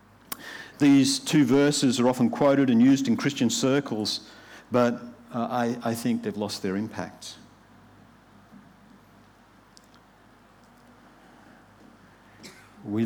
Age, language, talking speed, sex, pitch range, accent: 50-69, English, 95 wpm, male, 95-125 Hz, Australian